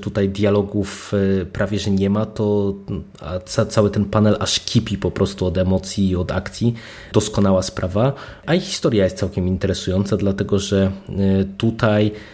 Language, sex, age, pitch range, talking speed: Polish, male, 20-39, 95-105 Hz, 145 wpm